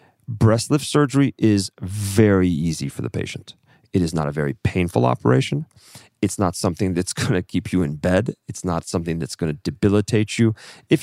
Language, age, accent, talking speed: English, 40-59, American, 190 wpm